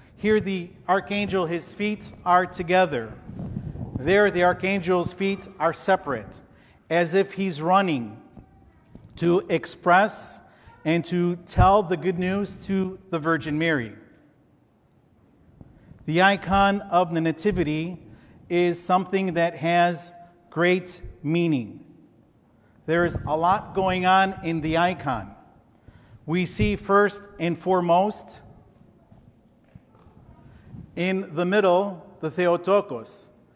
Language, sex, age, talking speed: English, male, 50-69, 105 wpm